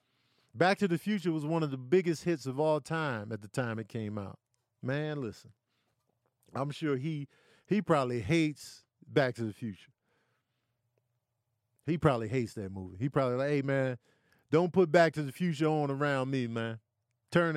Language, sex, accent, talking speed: English, male, American, 180 wpm